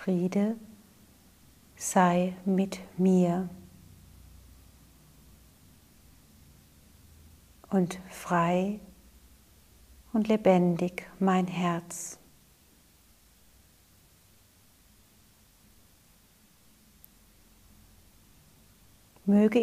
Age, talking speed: 40-59, 35 wpm